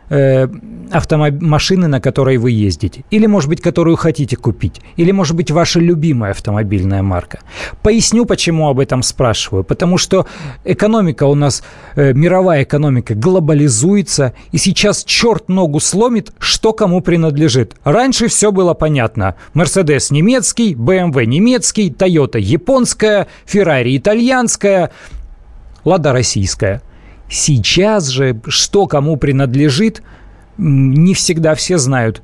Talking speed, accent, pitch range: 115 wpm, native, 130-185 Hz